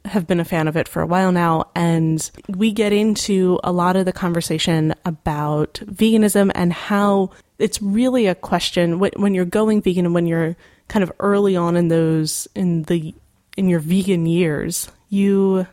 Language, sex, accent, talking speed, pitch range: English, female, American, 180 wpm, 170-195 Hz